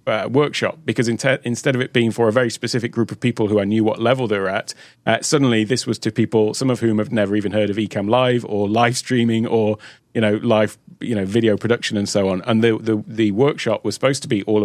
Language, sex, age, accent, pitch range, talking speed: English, male, 30-49, British, 105-125 Hz, 245 wpm